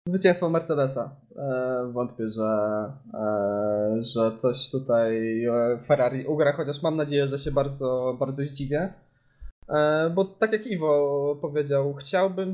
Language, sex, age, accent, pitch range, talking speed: Polish, male, 20-39, native, 135-155 Hz, 110 wpm